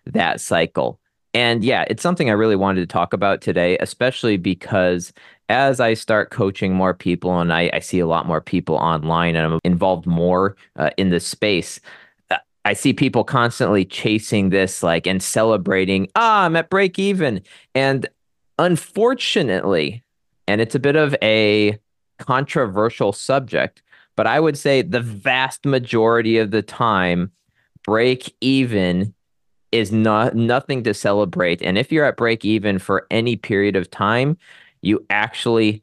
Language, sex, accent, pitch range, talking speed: English, male, American, 95-125 Hz, 155 wpm